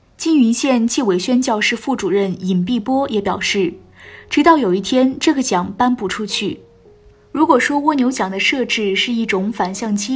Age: 20-39